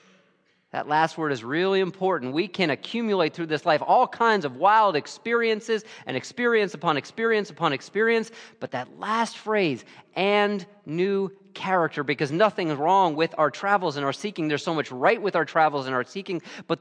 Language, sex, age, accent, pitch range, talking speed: English, male, 40-59, American, 140-205 Hz, 180 wpm